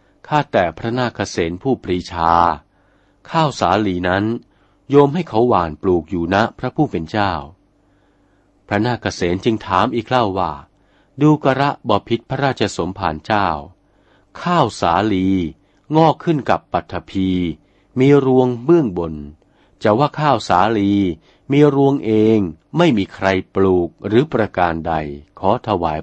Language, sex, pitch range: Thai, male, 90-125 Hz